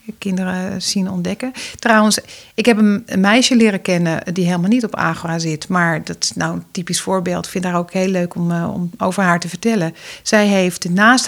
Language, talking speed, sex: Dutch, 205 wpm, female